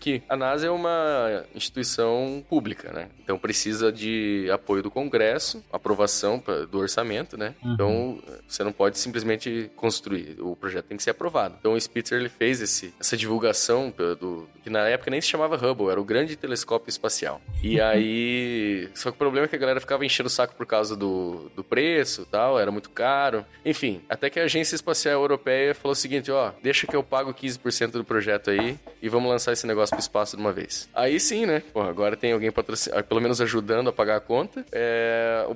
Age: 20-39